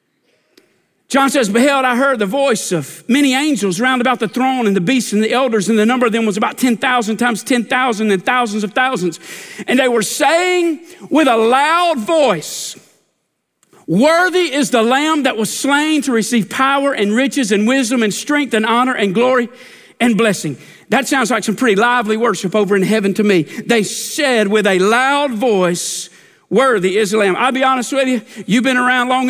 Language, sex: English, male